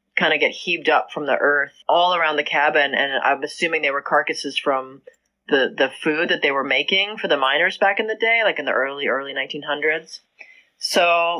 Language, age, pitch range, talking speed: English, 30-49, 145-195 Hz, 210 wpm